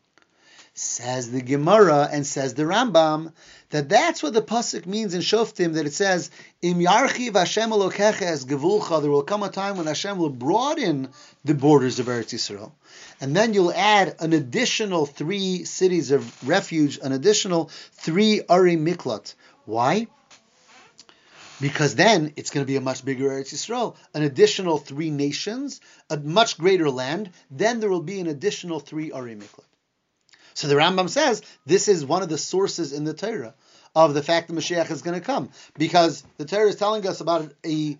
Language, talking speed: English, 175 wpm